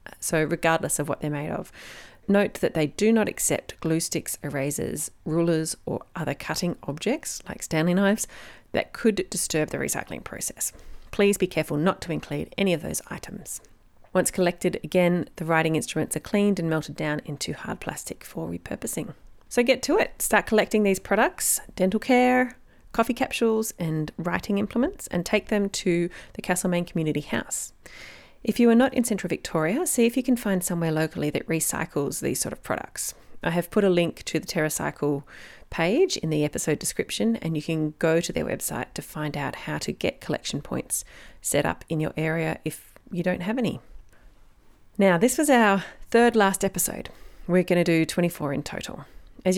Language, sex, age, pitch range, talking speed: English, female, 30-49, 155-210 Hz, 185 wpm